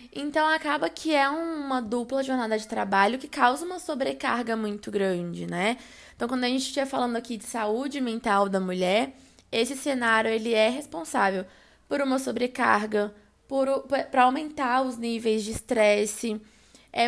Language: Portuguese